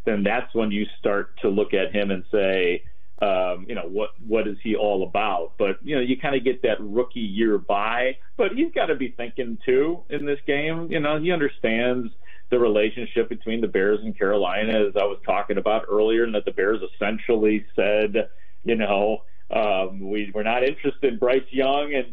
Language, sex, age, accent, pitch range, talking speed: English, male, 40-59, American, 105-135 Hz, 205 wpm